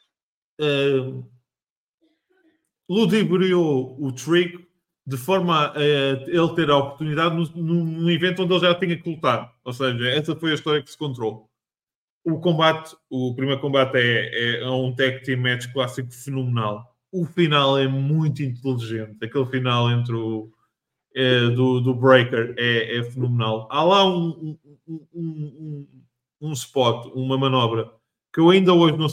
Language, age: English, 20-39